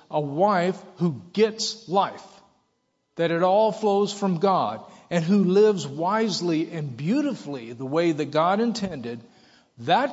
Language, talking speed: English, 135 wpm